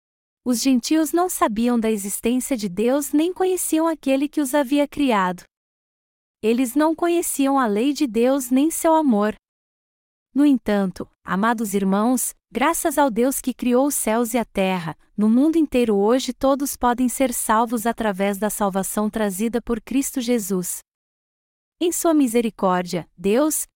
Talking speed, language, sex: 145 wpm, Portuguese, female